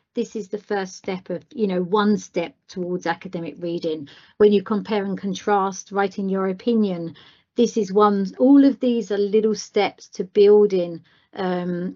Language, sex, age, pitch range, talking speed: English, female, 40-59, 185-225 Hz, 165 wpm